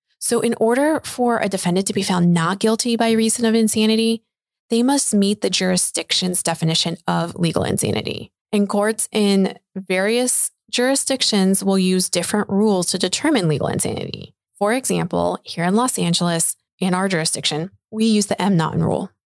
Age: 20-39